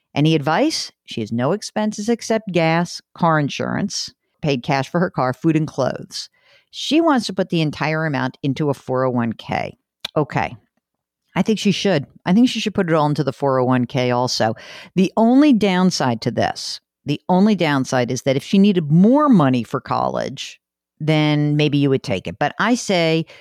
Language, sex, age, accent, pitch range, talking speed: English, female, 50-69, American, 130-185 Hz, 180 wpm